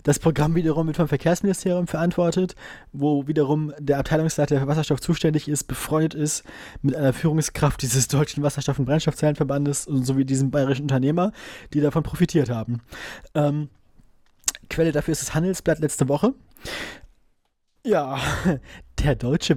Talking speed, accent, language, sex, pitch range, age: 140 wpm, German, German, male, 125-155 Hz, 20-39